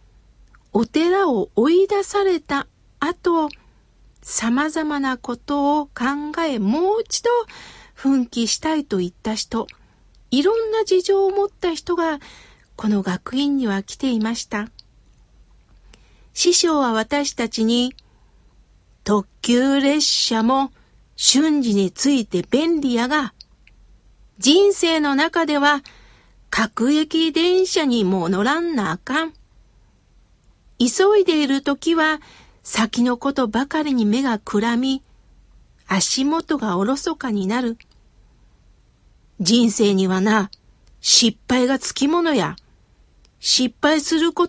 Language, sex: Japanese, female